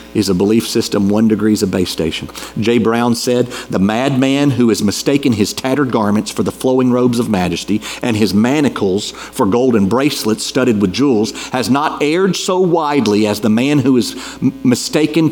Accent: American